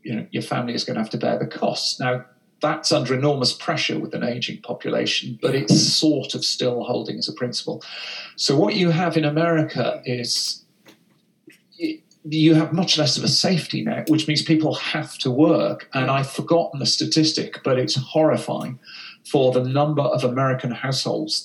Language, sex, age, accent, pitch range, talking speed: English, male, 40-59, British, 125-160 Hz, 180 wpm